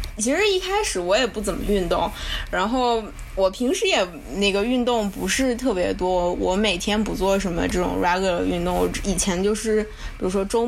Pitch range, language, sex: 195-245 Hz, Chinese, female